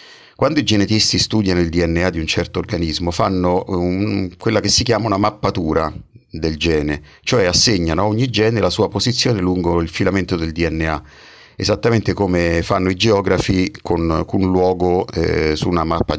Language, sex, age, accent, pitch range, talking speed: Italian, male, 50-69, native, 85-105 Hz, 165 wpm